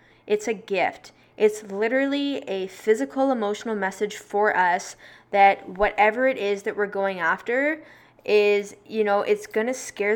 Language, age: English, 10-29